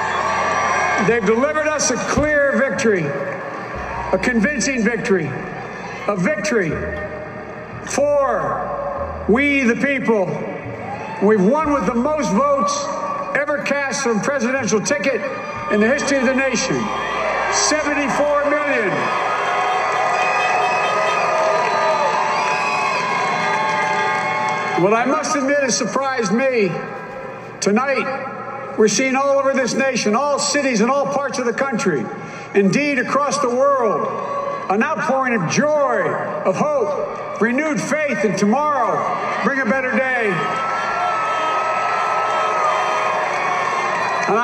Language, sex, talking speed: English, male, 105 wpm